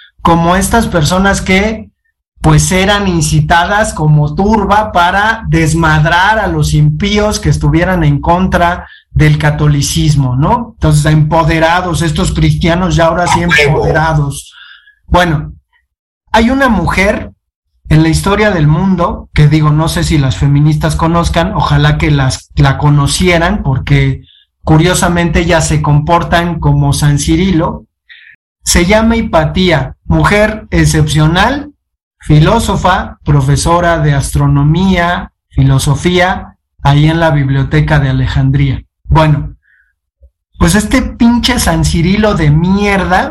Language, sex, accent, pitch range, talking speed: Spanish, male, Mexican, 145-185 Hz, 115 wpm